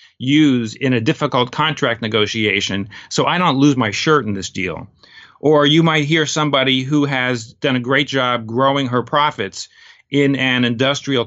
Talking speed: 170 wpm